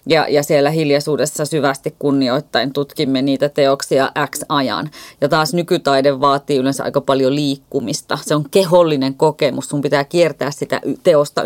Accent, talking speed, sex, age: native, 140 wpm, female, 30-49